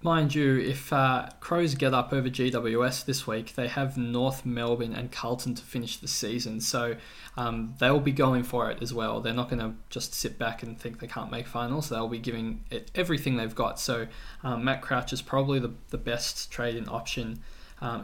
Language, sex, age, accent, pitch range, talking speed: English, male, 20-39, Australian, 120-135 Hz, 205 wpm